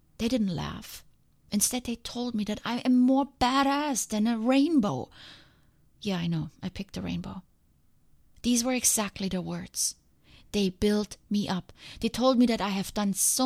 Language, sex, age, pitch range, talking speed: English, female, 30-49, 185-230 Hz, 175 wpm